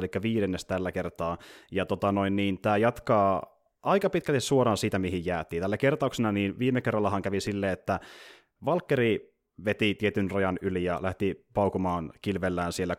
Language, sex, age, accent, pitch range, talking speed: Finnish, male, 30-49, native, 95-125 Hz, 155 wpm